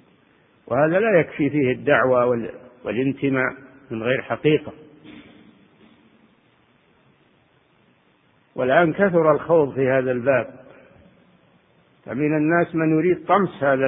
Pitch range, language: 125-155 Hz, Arabic